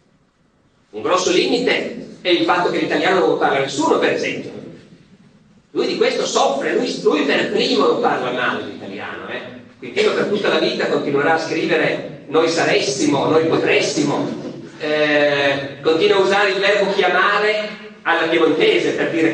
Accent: native